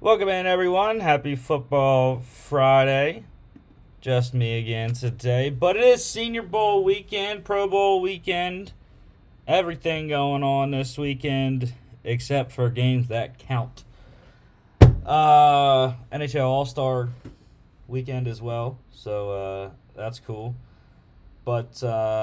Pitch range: 110-140 Hz